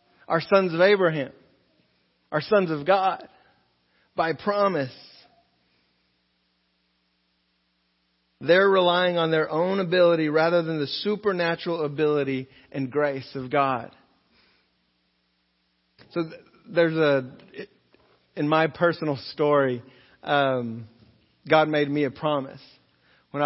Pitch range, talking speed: 130-165 Hz, 100 wpm